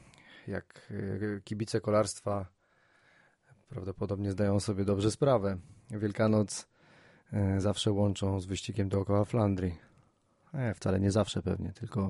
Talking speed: 100 wpm